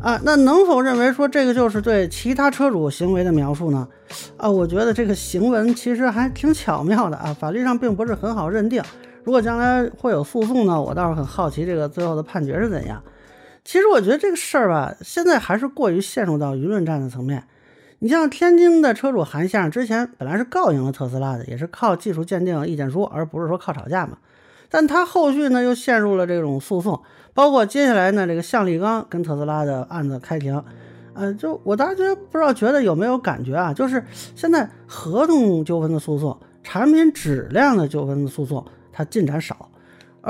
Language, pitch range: Chinese, 160-265 Hz